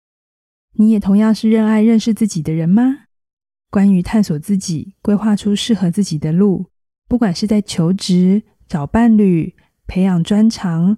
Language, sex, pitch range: Chinese, female, 185-220 Hz